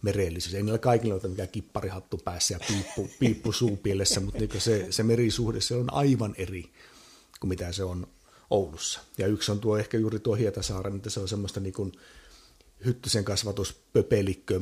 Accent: native